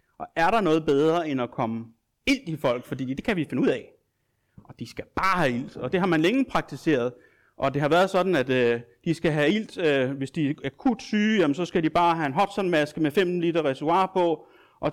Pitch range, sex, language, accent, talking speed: 120-180 Hz, male, Danish, native, 245 wpm